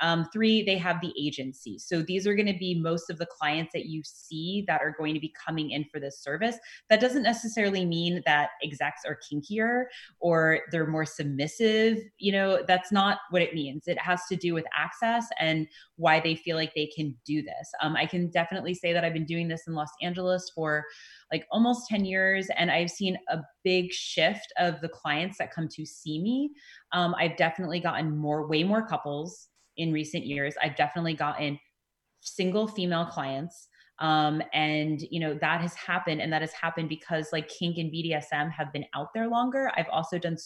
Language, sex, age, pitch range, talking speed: English, female, 20-39, 155-185 Hz, 200 wpm